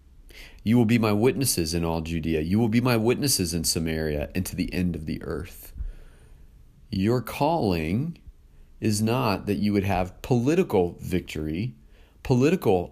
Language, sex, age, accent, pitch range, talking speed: English, male, 40-59, American, 80-105 Hz, 155 wpm